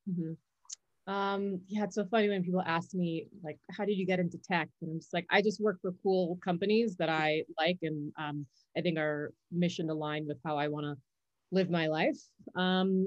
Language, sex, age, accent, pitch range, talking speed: English, female, 30-49, American, 160-190 Hz, 215 wpm